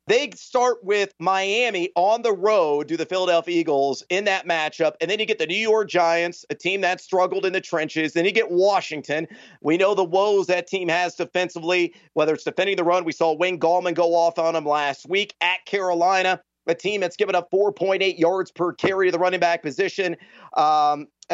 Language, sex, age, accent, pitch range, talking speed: English, male, 40-59, American, 165-200 Hz, 210 wpm